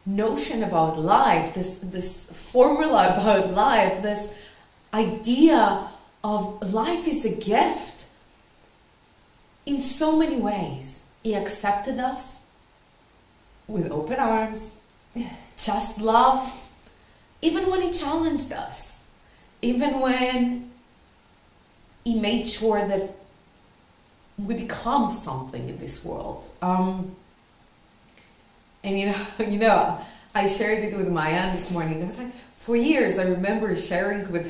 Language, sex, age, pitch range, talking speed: English, female, 30-49, 190-270 Hz, 115 wpm